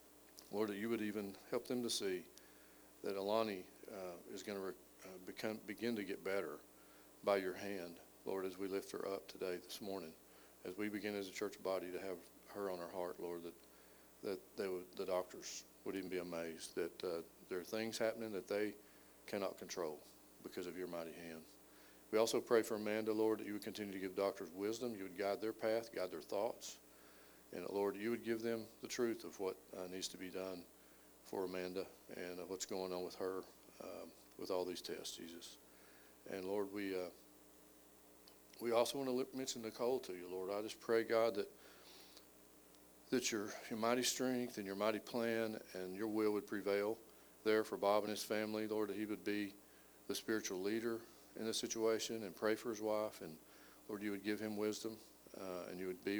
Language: English